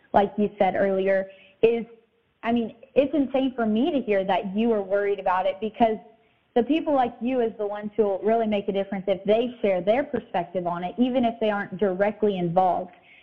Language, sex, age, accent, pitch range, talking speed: English, female, 20-39, American, 205-245 Hz, 205 wpm